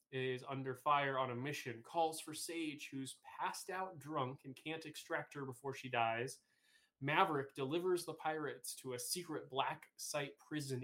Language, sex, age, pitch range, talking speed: English, male, 20-39, 130-165 Hz, 165 wpm